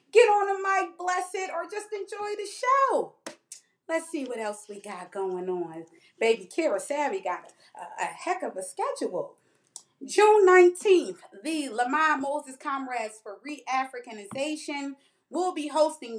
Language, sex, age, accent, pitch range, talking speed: English, female, 30-49, American, 220-315 Hz, 150 wpm